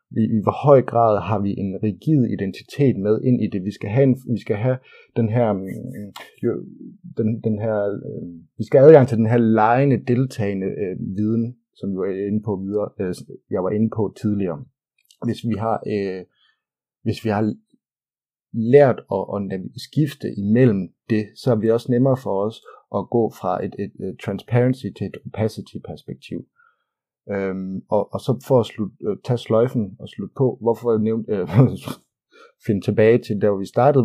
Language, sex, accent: Danish, male, native